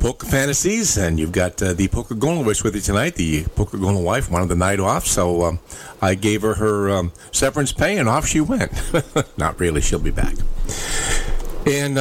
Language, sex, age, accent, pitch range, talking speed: English, male, 50-69, American, 90-135 Hz, 190 wpm